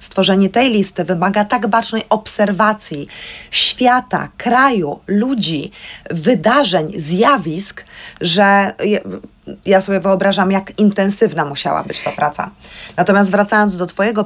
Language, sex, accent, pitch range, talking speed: Polish, female, native, 175-210 Hz, 110 wpm